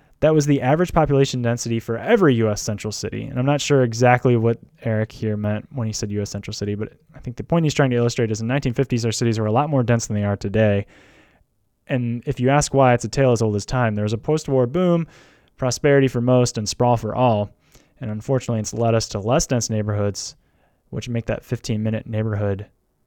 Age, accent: 20-39, American